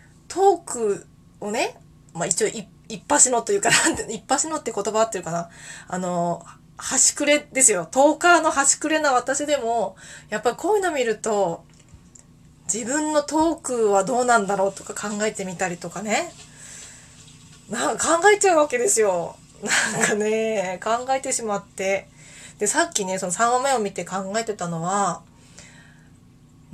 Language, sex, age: Japanese, female, 20-39